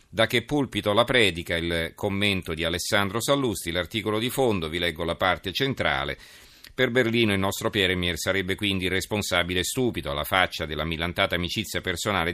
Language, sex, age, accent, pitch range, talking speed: Italian, male, 40-59, native, 80-100 Hz, 165 wpm